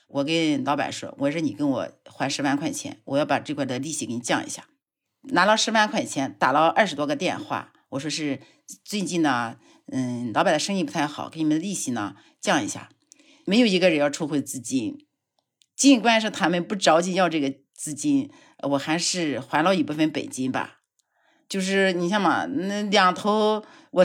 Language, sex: Chinese, female